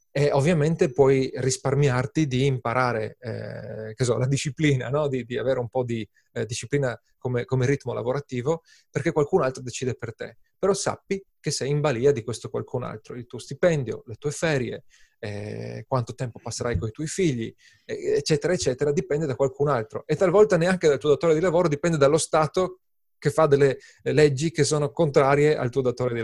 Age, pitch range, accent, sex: 30-49, 120-155 Hz, native, male